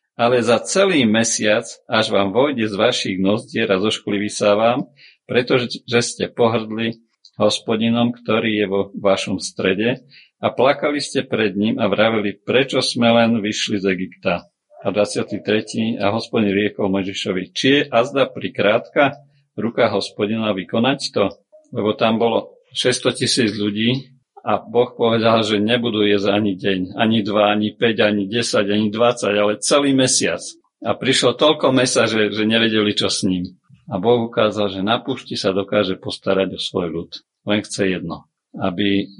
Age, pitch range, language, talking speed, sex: 50-69, 100-120 Hz, Slovak, 155 wpm, male